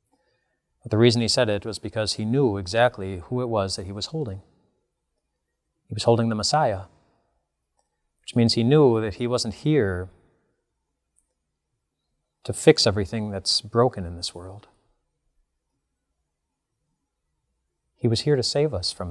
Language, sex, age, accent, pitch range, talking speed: English, male, 30-49, American, 90-120 Hz, 145 wpm